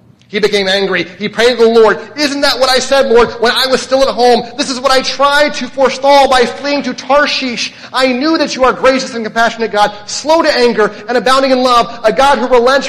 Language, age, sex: English, 30-49, male